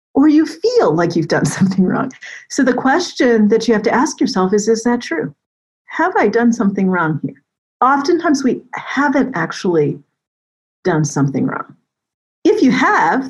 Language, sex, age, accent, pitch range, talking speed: English, female, 40-59, American, 165-245 Hz, 165 wpm